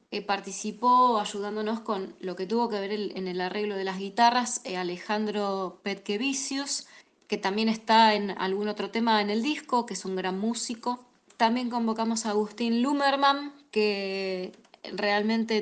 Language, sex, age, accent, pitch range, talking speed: Spanish, female, 20-39, Argentinian, 195-245 Hz, 145 wpm